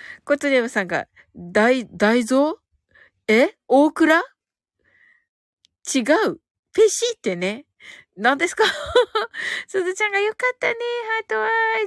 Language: Japanese